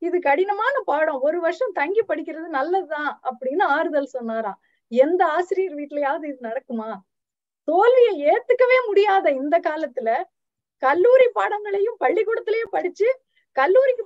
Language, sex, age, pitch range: Tamil, female, 20-39, 285-400 Hz